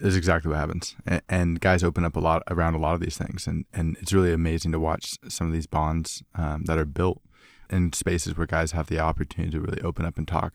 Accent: American